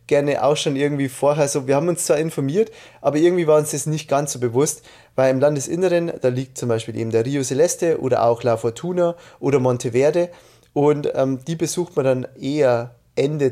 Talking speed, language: 205 wpm, German